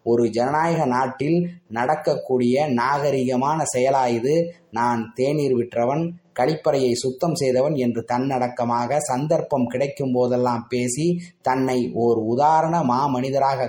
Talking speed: 95 wpm